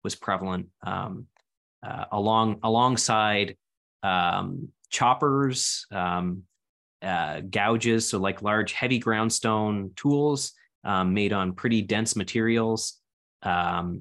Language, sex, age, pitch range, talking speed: English, male, 20-39, 95-120 Hz, 105 wpm